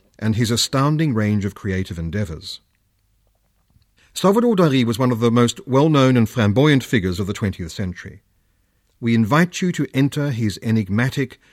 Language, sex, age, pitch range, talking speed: English, male, 50-69, 100-140 Hz, 150 wpm